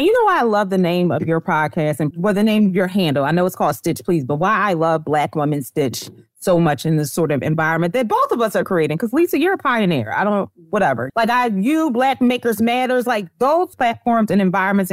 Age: 30-49